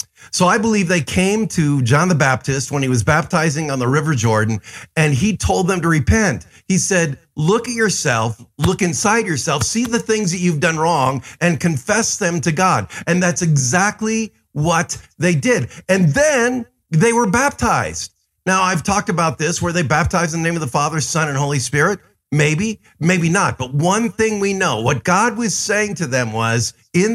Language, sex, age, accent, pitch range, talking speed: English, male, 50-69, American, 150-205 Hz, 195 wpm